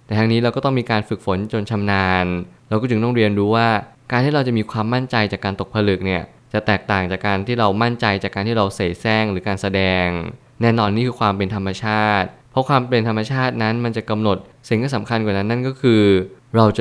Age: 20-39